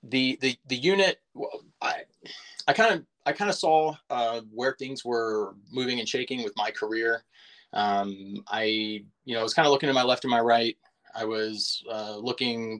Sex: male